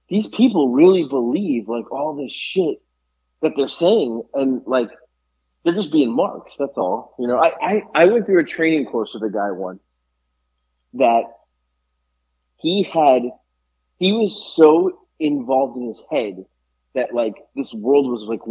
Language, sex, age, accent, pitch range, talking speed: English, male, 30-49, American, 100-160 Hz, 160 wpm